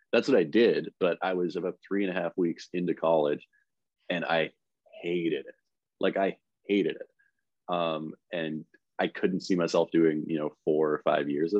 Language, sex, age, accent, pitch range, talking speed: English, male, 30-49, American, 80-100 Hz, 190 wpm